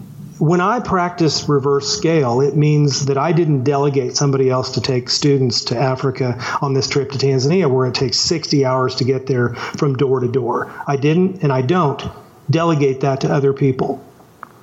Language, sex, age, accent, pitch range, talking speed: English, male, 40-59, American, 135-155 Hz, 185 wpm